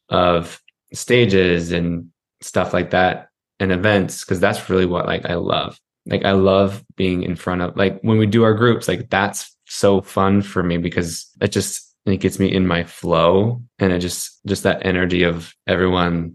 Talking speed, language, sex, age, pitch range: 185 wpm, English, male, 20-39, 90-100 Hz